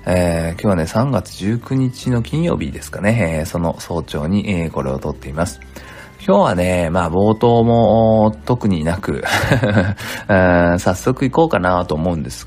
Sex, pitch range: male, 80-110 Hz